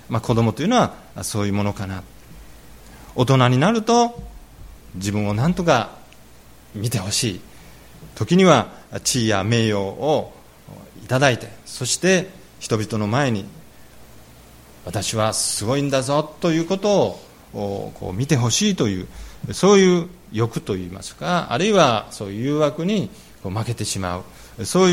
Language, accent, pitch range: Japanese, native, 100-170 Hz